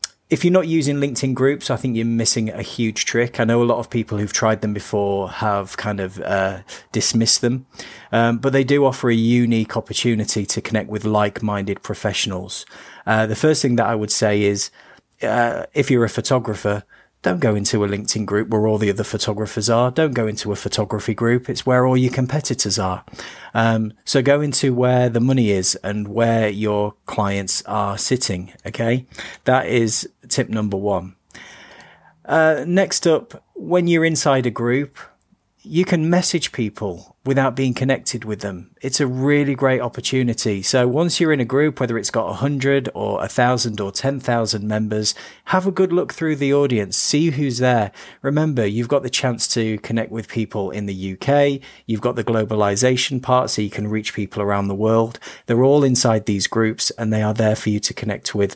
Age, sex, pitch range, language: 30-49, male, 105-130 Hz, English